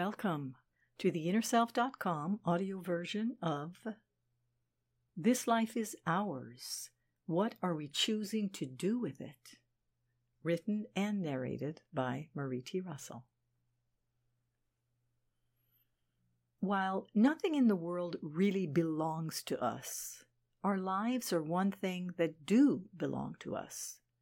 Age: 60-79